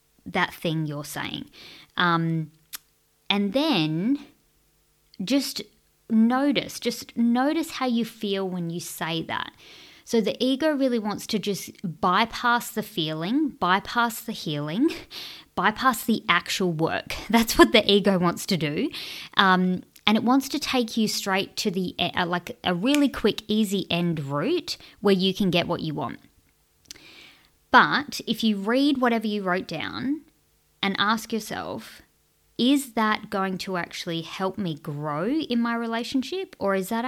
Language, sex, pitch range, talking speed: English, female, 175-245 Hz, 150 wpm